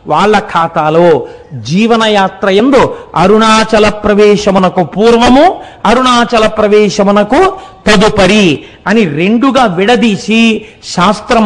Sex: male